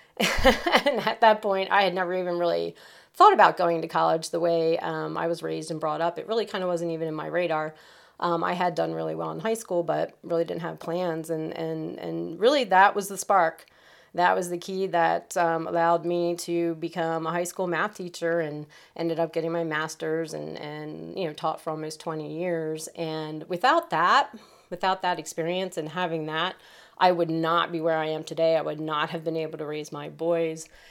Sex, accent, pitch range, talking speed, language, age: female, American, 155-175 Hz, 215 wpm, English, 30-49